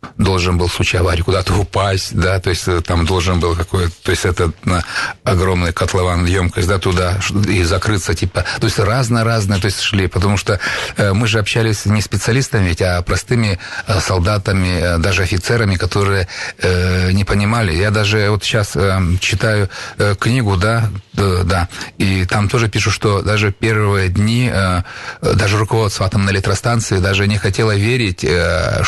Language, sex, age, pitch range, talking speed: Russian, male, 30-49, 95-110 Hz, 165 wpm